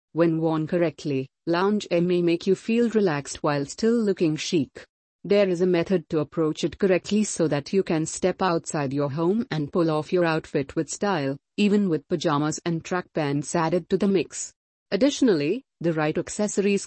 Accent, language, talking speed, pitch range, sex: Indian, English, 180 wpm, 160-200 Hz, female